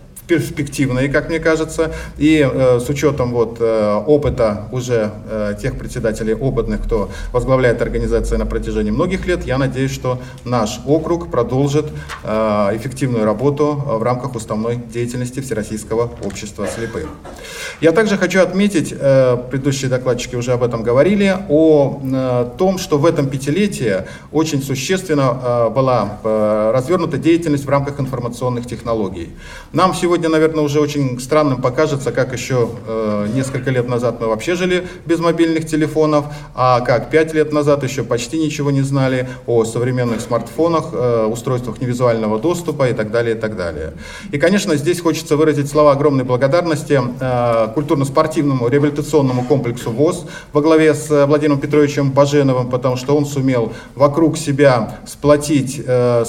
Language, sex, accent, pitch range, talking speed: Russian, male, native, 120-155 Hz, 145 wpm